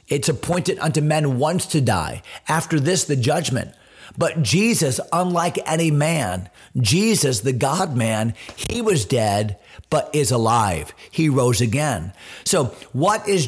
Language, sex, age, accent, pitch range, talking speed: English, male, 40-59, American, 120-160 Hz, 145 wpm